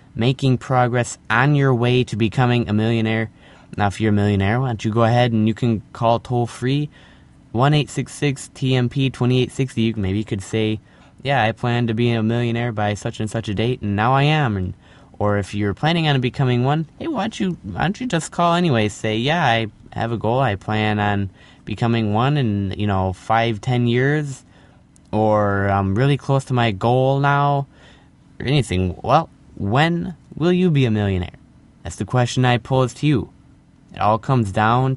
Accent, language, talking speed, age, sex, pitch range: American, English, 180 wpm, 20-39, male, 105-135 Hz